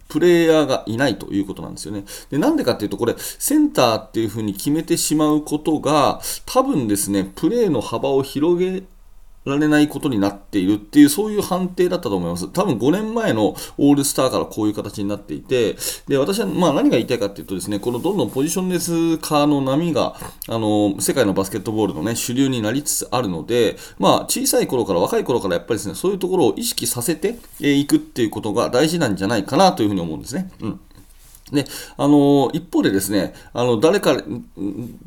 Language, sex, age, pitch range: Japanese, male, 30-49, 105-165 Hz